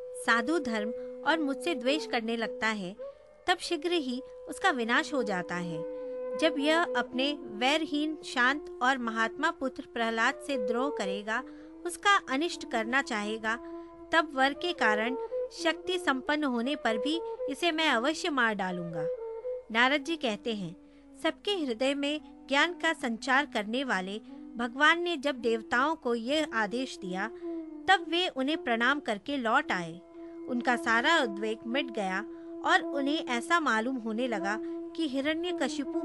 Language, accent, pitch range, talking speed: Hindi, native, 245-335 Hz, 145 wpm